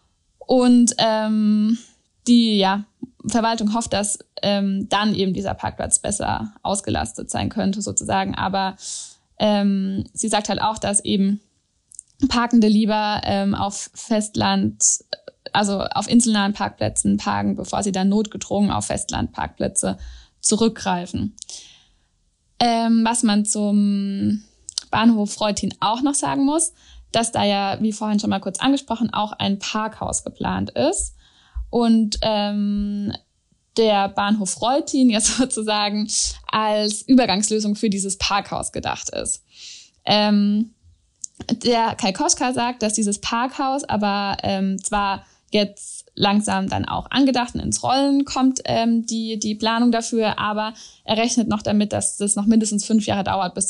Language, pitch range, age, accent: German, 200-230 Hz, 10-29, German